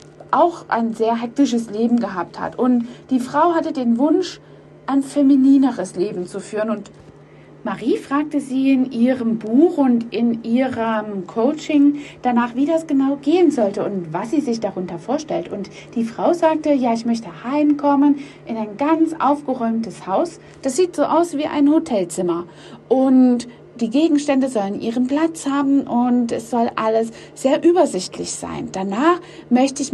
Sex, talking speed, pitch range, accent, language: female, 155 wpm, 225-285 Hz, German, German